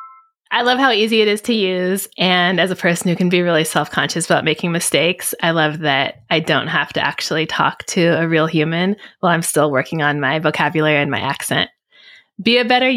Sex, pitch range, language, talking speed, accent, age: female, 160-210 Hz, English, 215 wpm, American, 20-39